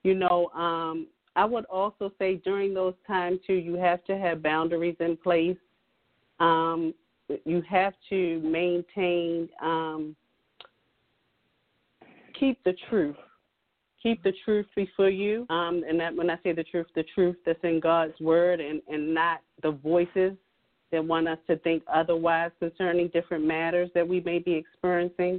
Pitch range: 160-185 Hz